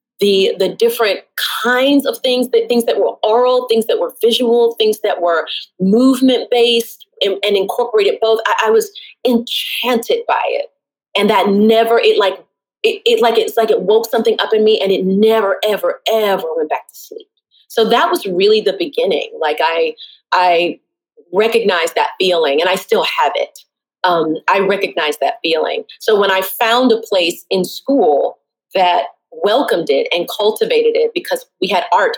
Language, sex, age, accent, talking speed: English, female, 30-49, American, 175 wpm